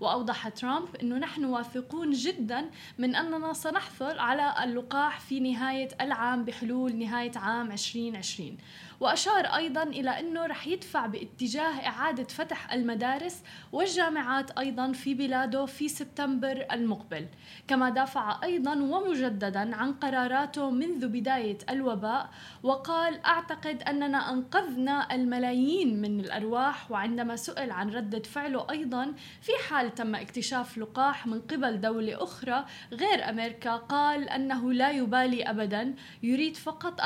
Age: 10-29